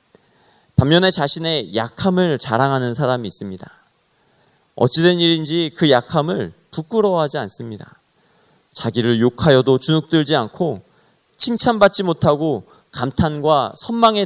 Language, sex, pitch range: Korean, male, 120-170 Hz